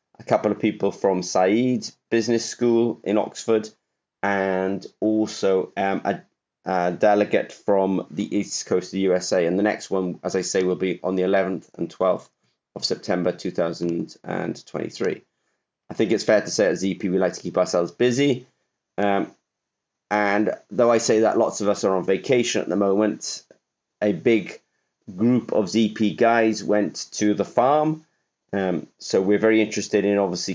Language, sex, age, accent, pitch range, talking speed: English, male, 30-49, British, 95-110 Hz, 170 wpm